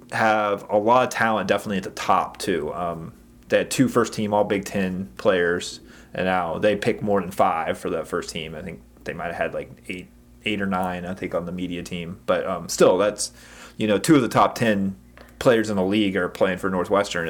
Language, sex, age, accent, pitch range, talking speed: English, male, 30-49, American, 95-115 Hz, 230 wpm